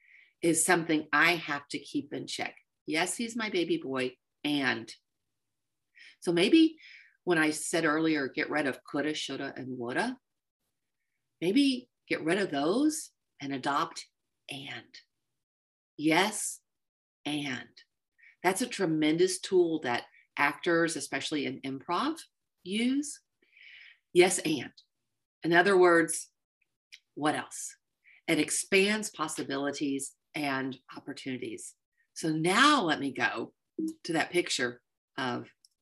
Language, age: English, 40-59